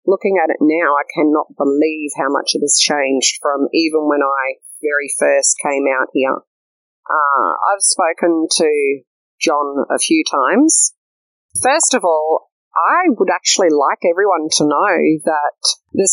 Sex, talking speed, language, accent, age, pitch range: female, 155 wpm, English, Australian, 30-49, 145-190 Hz